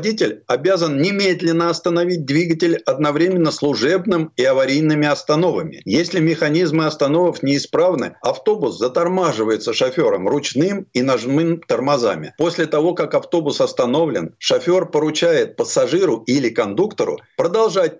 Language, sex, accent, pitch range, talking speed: Russian, male, native, 135-190 Hz, 105 wpm